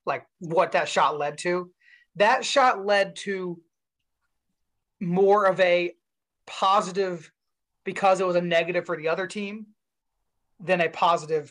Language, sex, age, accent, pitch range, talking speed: English, male, 30-49, American, 165-200 Hz, 135 wpm